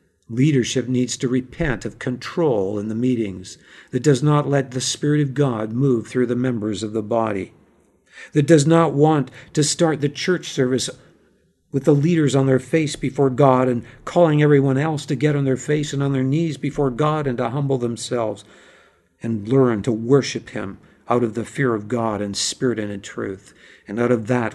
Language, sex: English, male